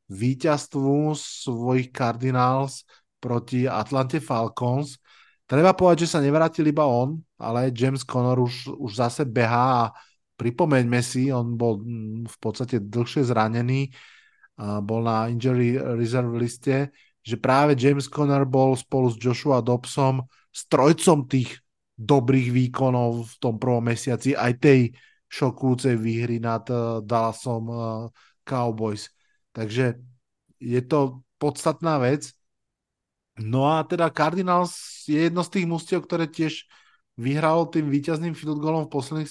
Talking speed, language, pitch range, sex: 120 wpm, Slovak, 120-150 Hz, male